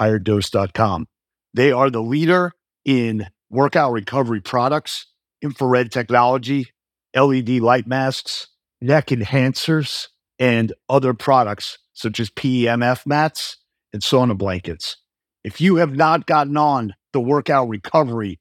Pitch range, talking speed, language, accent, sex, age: 115-145 Hz, 115 wpm, English, American, male, 50-69